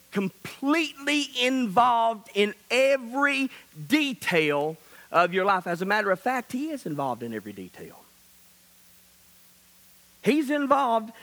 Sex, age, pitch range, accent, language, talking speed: male, 50-69, 180-255 Hz, American, English, 110 wpm